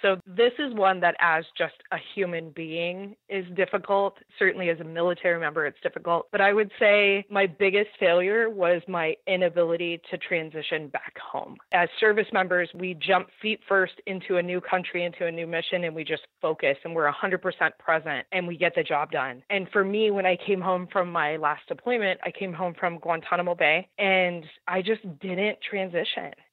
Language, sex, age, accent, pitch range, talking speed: English, female, 20-39, American, 170-200 Hz, 190 wpm